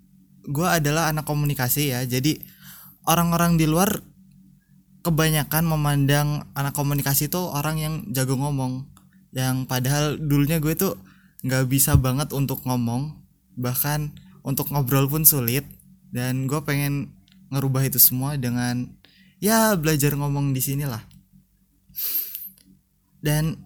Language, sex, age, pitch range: Indonesian, male, 20-39, 135-170 Hz